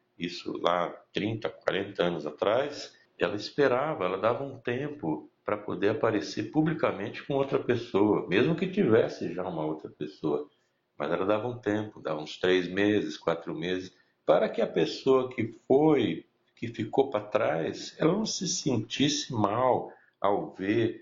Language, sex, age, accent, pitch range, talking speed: Portuguese, male, 60-79, Brazilian, 90-130 Hz, 155 wpm